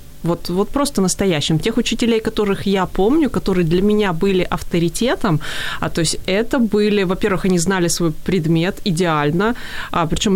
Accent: native